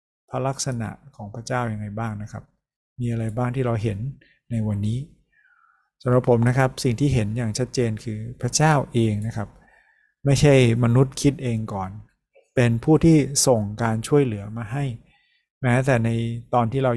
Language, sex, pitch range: Thai, male, 115-135 Hz